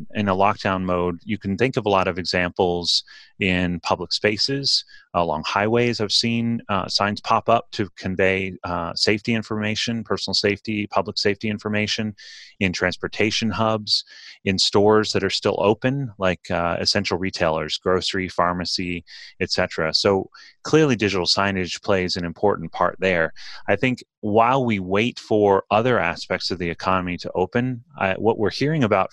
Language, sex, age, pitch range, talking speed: English, male, 30-49, 90-110 Hz, 155 wpm